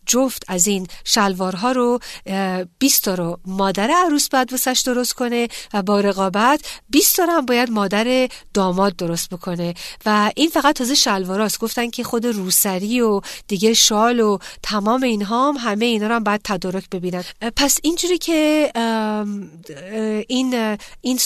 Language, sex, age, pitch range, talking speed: Persian, female, 40-59, 200-250 Hz, 145 wpm